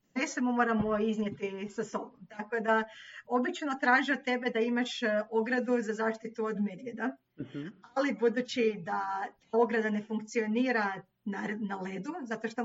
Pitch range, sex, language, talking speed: 215-250 Hz, female, Croatian, 140 wpm